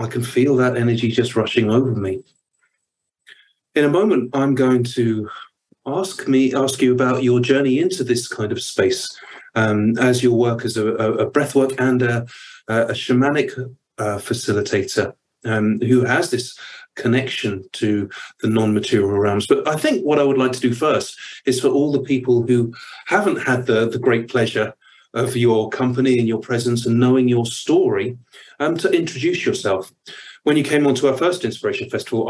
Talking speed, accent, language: 175 wpm, British, English